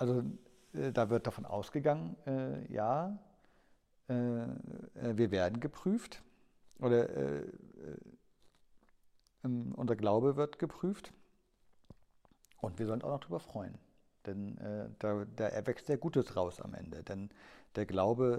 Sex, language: male, German